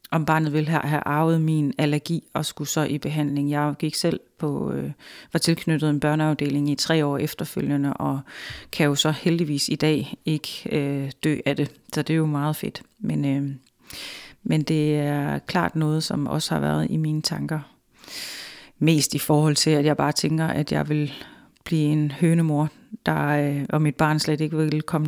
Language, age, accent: Danish, 30-49, native